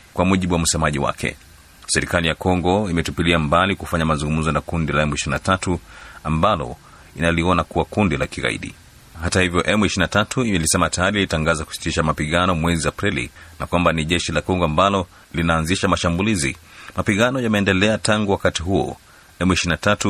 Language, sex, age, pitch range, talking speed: Swahili, male, 30-49, 80-95 Hz, 140 wpm